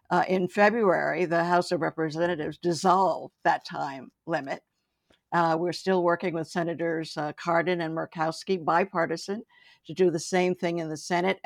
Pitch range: 165-185 Hz